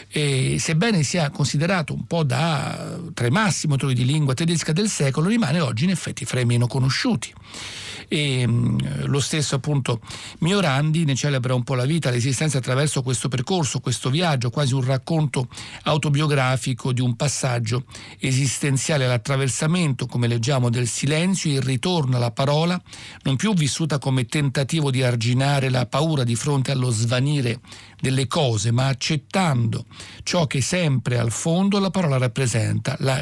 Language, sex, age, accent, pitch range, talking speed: Italian, male, 60-79, native, 125-160 Hz, 150 wpm